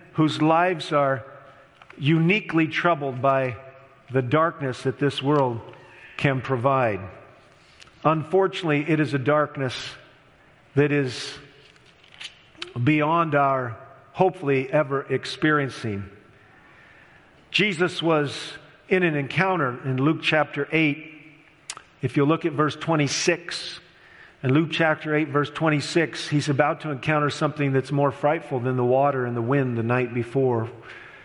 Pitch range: 130-155 Hz